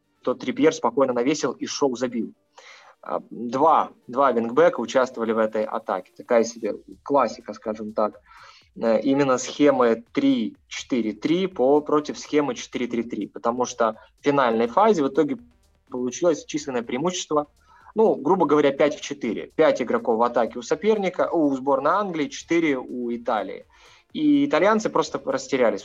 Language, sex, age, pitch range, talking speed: Russian, male, 20-39, 115-160 Hz, 130 wpm